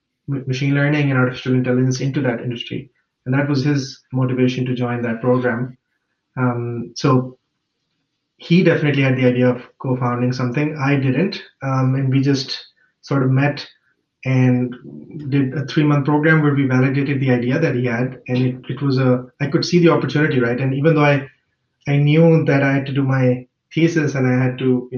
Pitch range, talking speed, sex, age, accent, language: 125-145 Hz, 185 wpm, male, 20-39, Indian, English